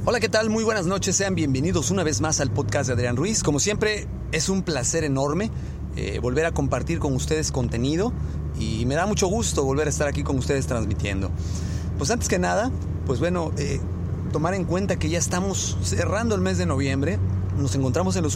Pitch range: 100-150 Hz